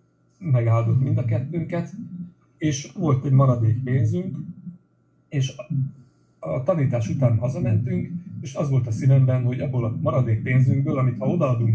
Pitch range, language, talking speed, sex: 110-130 Hz, Hungarian, 140 wpm, male